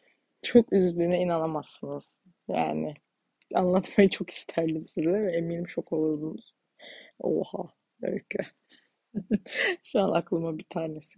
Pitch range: 180-240 Hz